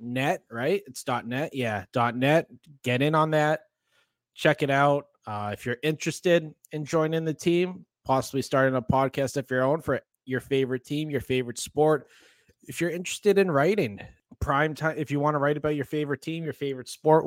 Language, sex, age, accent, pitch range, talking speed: English, male, 20-39, American, 125-155 Hz, 195 wpm